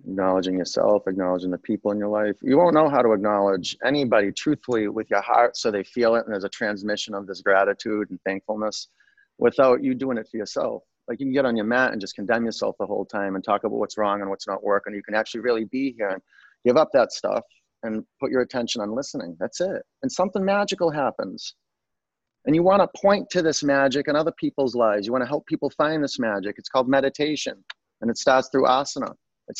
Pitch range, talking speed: 105-145 Hz, 230 wpm